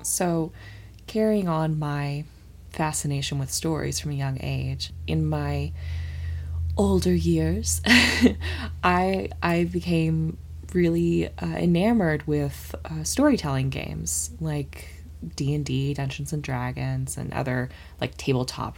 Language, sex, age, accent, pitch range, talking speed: English, female, 20-39, American, 105-150 Hz, 110 wpm